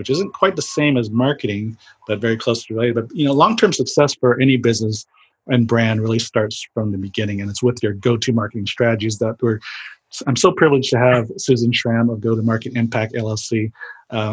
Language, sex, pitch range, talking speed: English, male, 115-135 Hz, 205 wpm